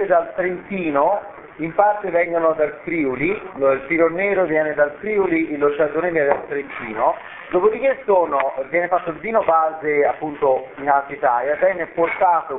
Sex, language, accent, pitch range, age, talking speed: male, Italian, native, 145-205 Hz, 40-59, 145 wpm